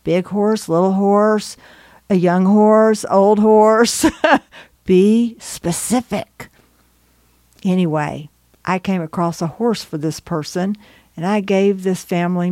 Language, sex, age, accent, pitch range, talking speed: English, female, 50-69, American, 170-225 Hz, 120 wpm